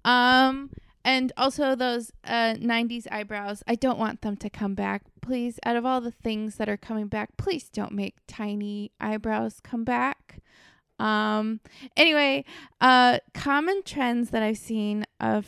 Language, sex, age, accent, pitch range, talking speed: English, female, 20-39, American, 210-260 Hz, 155 wpm